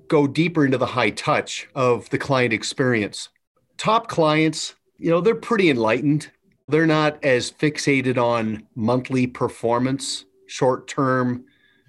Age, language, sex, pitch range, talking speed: 40-59, English, male, 125-155 Hz, 125 wpm